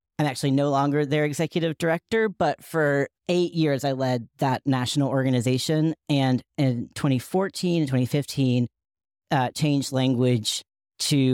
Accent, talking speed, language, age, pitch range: American, 130 wpm, English, 40-59, 125-150 Hz